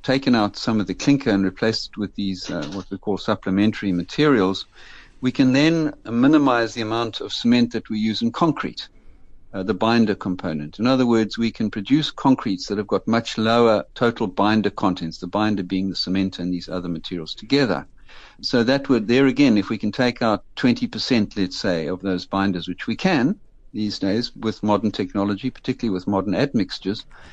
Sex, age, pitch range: male, 60-79, 100-125 Hz